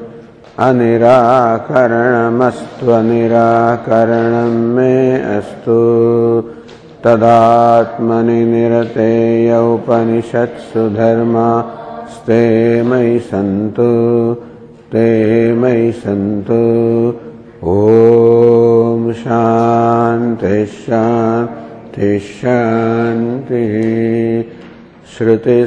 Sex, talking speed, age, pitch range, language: male, 40 wpm, 50-69, 115-120 Hz, English